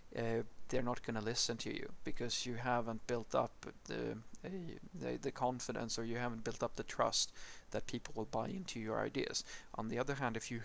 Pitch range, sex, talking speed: 110-125 Hz, male, 215 wpm